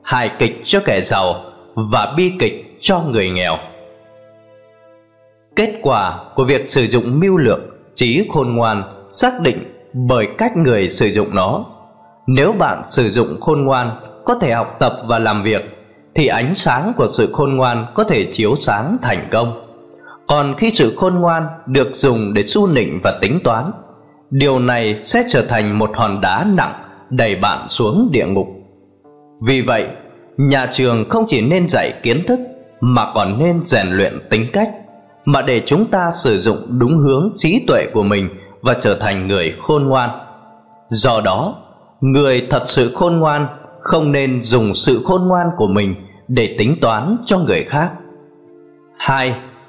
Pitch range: 110-160 Hz